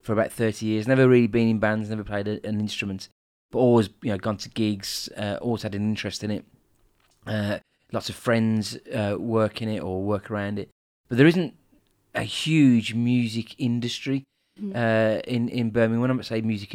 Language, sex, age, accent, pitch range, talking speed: English, male, 30-49, British, 105-125 Hz, 195 wpm